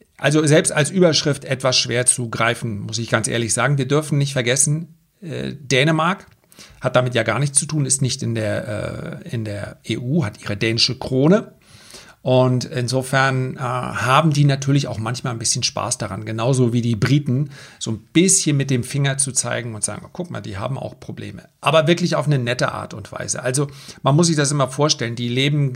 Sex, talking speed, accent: male, 200 wpm, German